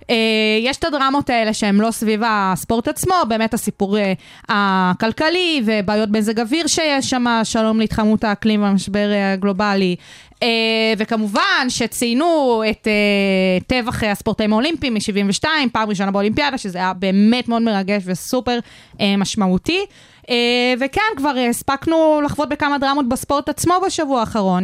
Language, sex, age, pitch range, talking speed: Hebrew, female, 20-39, 200-240 Hz, 135 wpm